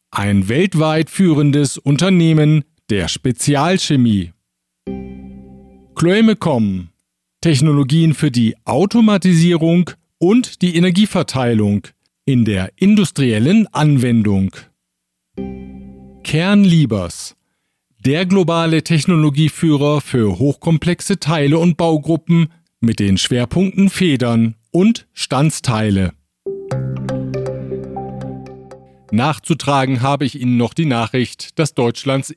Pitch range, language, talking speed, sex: 110-160 Hz, German, 80 wpm, male